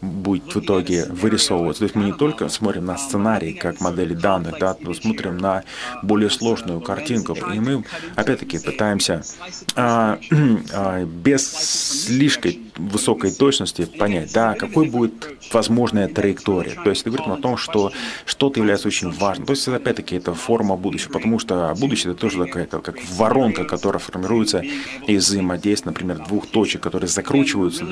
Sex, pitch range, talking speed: male, 90-115 Hz, 155 wpm